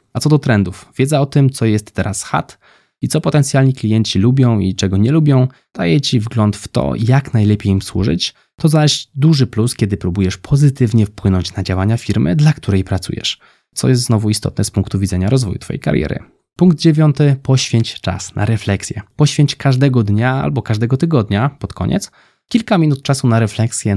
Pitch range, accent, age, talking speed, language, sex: 100-140 Hz, native, 20-39, 180 wpm, Polish, male